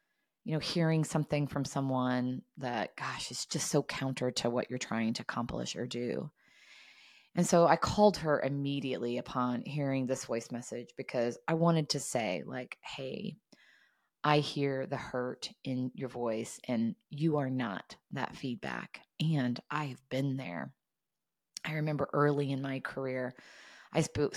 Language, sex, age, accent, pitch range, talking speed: English, female, 20-39, American, 125-155 Hz, 160 wpm